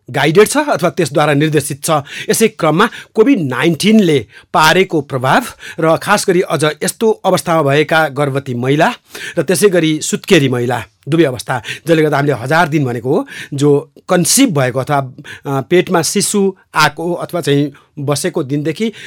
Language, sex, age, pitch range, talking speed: English, male, 60-79, 145-180 Hz, 115 wpm